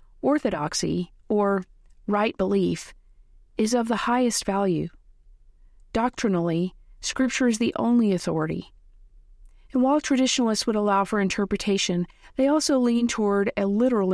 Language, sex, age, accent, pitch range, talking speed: English, female, 40-59, American, 175-230 Hz, 120 wpm